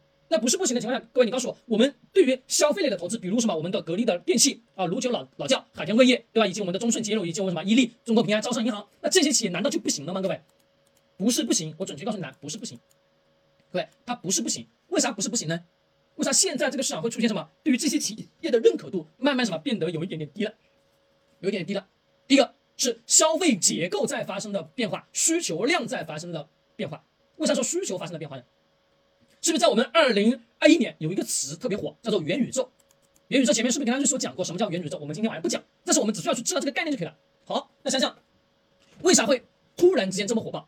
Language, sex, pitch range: Chinese, male, 190-275 Hz